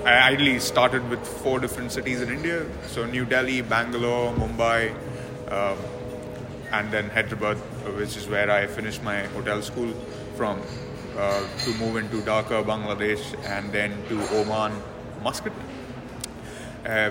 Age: 20-39